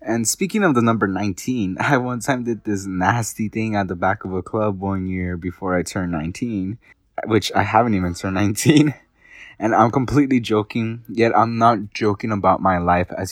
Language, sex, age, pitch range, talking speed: English, male, 20-39, 100-120 Hz, 195 wpm